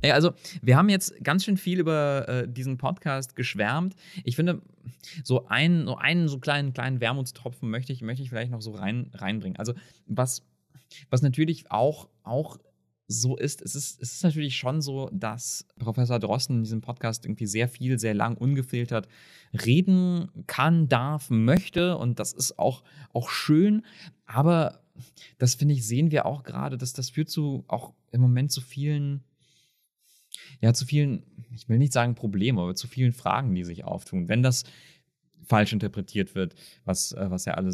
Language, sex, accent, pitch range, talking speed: German, male, German, 110-150 Hz, 175 wpm